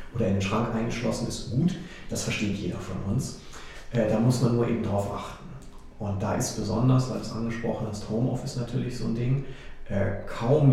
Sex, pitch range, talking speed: male, 100-120 Hz, 185 wpm